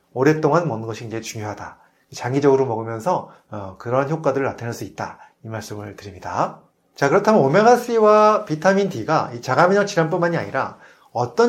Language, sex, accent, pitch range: Korean, male, native, 115-180 Hz